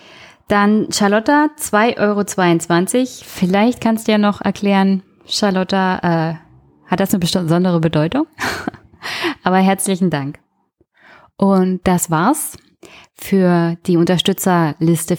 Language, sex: German, female